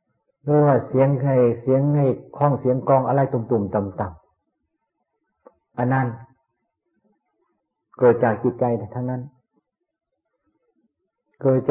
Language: Thai